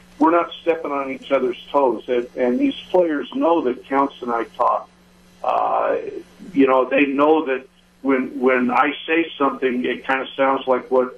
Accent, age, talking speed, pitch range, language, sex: American, 50-69, 185 wpm, 130-160 Hz, English, male